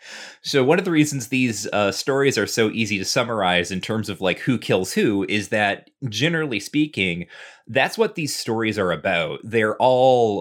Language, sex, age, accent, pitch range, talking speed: English, male, 30-49, American, 95-115 Hz, 185 wpm